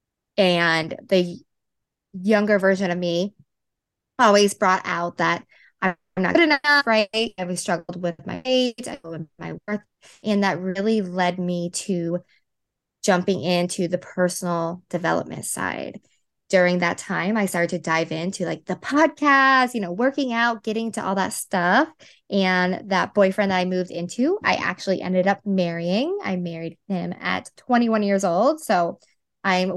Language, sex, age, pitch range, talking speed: English, female, 20-39, 180-220 Hz, 155 wpm